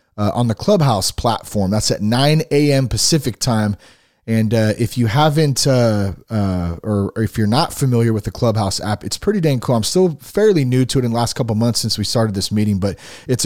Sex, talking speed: male, 225 wpm